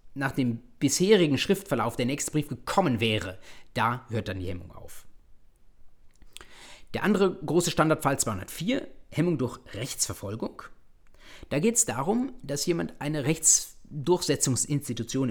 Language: German